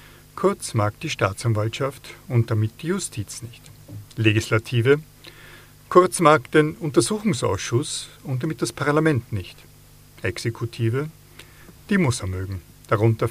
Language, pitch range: German, 110-140 Hz